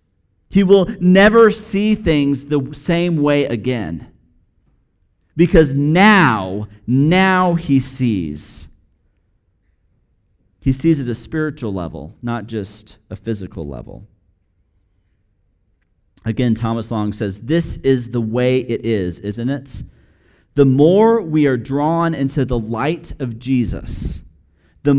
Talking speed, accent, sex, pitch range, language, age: 115 wpm, American, male, 110-170 Hz, English, 40-59